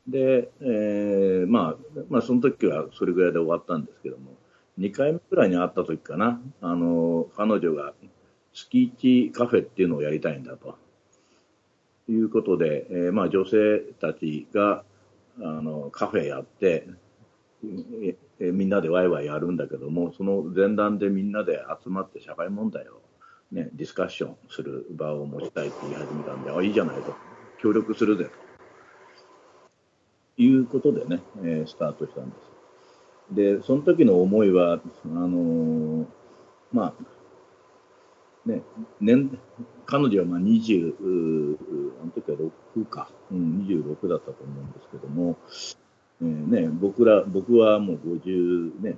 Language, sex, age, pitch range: Japanese, male, 50-69, 85-130 Hz